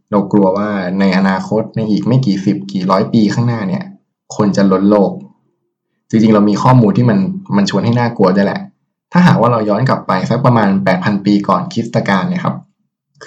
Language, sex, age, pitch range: Thai, male, 20-39, 100-140 Hz